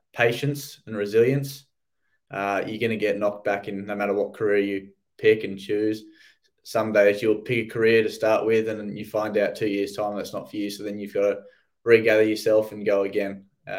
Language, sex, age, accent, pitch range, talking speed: English, male, 20-39, Australian, 105-120 Hz, 220 wpm